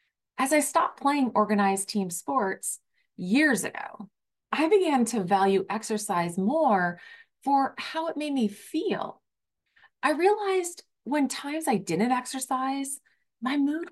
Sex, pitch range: female, 205-280 Hz